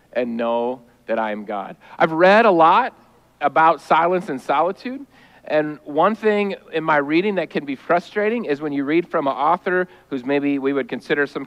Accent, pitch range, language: American, 155-235 Hz, English